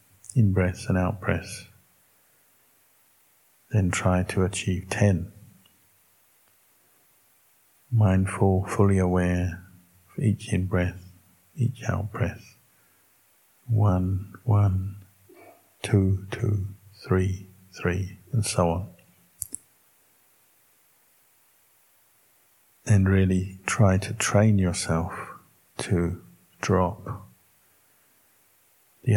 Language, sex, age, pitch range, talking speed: English, male, 50-69, 90-105 Hz, 70 wpm